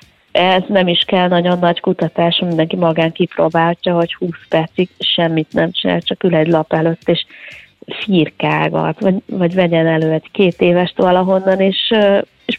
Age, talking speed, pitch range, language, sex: 30-49, 155 wpm, 170-200 Hz, Hungarian, female